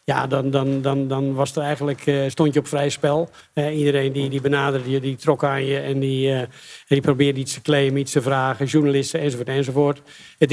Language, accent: Dutch, Dutch